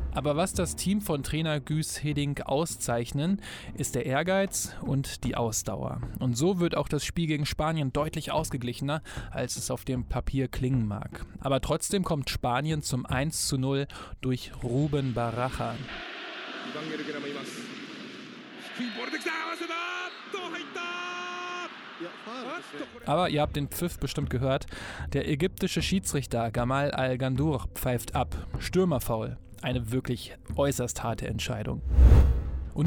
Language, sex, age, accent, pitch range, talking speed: German, male, 20-39, German, 125-190 Hz, 115 wpm